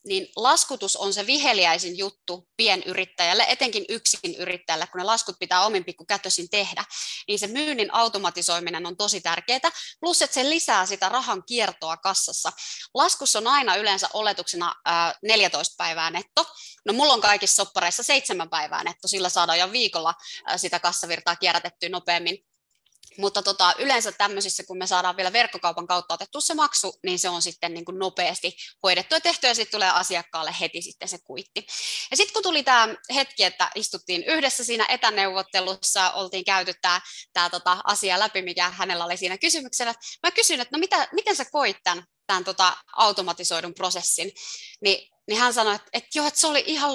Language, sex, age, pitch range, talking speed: Finnish, female, 20-39, 180-245 Hz, 170 wpm